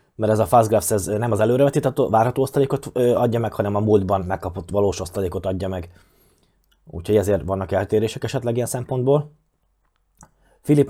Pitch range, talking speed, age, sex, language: 100-120 Hz, 150 wpm, 20-39, male, Hungarian